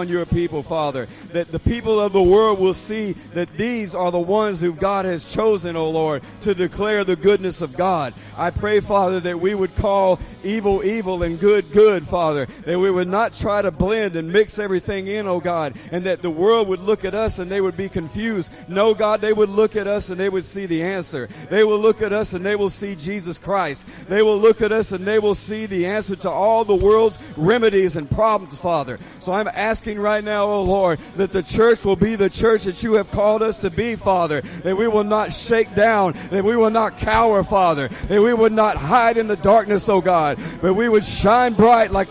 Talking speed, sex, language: 230 wpm, male, English